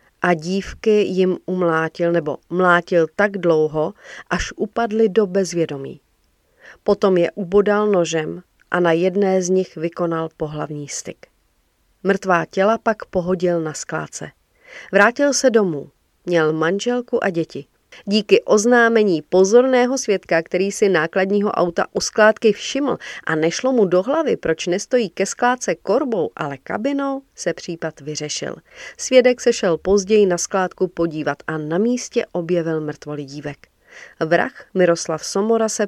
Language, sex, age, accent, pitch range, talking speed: Czech, female, 40-59, native, 165-215 Hz, 130 wpm